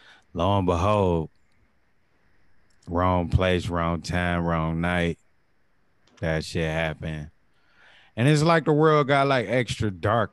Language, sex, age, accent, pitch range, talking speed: English, male, 30-49, American, 85-105 Hz, 120 wpm